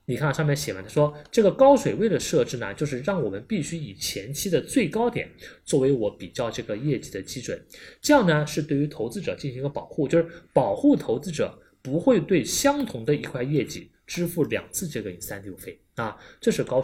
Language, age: Chinese, 20-39